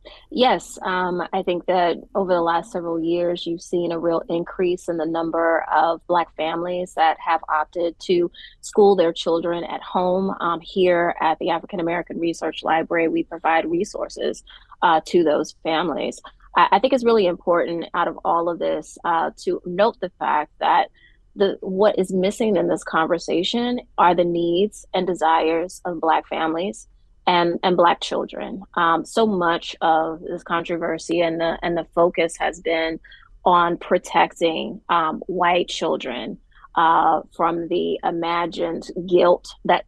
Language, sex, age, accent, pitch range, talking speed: English, female, 20-39, American, 165-190 Hz, 160 wpm